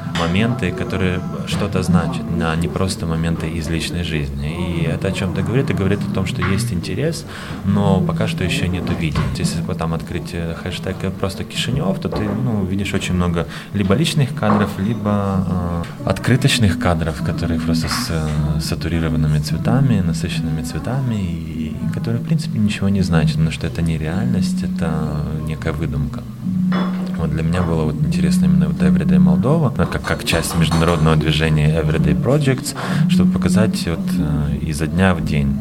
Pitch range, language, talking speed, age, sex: 80-125 Hz, Russian, 160 wpm, 20-39, male